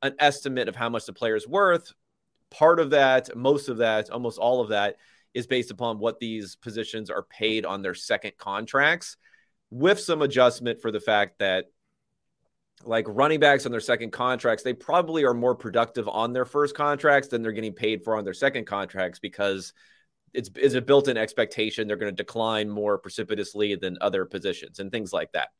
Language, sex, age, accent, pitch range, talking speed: English, male, 30-49, American, 110-140 Hz, 190 wpm